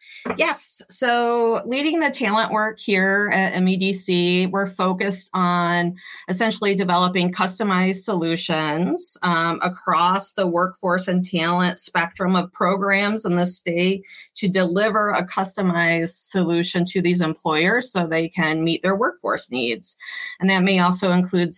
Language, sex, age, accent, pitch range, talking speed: English, female, 30-49, American, 170-195 Hz, 135 wpm